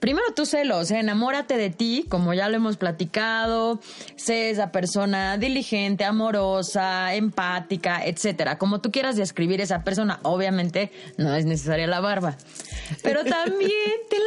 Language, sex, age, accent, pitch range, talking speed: Spanish, female, 20-39, Mexican, 190-260 Hz, 150 wpm